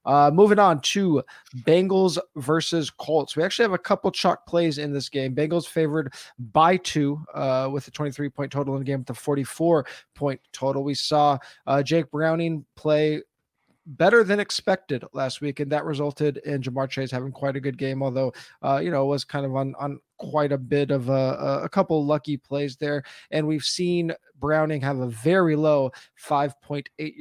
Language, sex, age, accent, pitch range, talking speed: English, male, 20-39, American, 135-160 Hz, 185 wpm